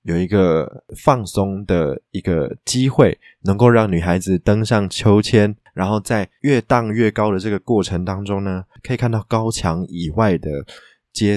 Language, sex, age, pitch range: Chinese, male, 20-39, 90-110 Hz